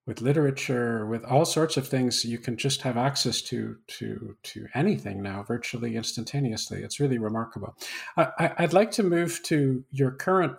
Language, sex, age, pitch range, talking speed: English, male, 50-69, 120-150 Hz, 170 wpm